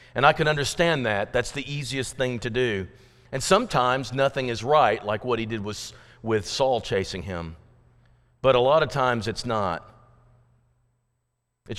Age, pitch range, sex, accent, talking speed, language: 40-59, 120-155 Hz, male, American, 170 wpm, English